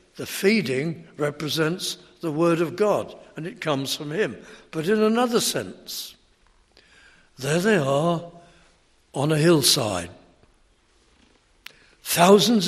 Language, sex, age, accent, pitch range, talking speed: English, male, 60-79, British, 150-185 Hz, 110 wpm